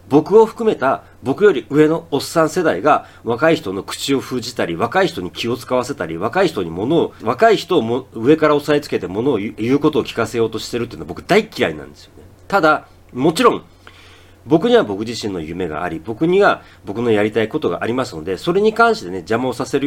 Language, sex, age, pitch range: Japanese, male, 40-59, 95-160 Hz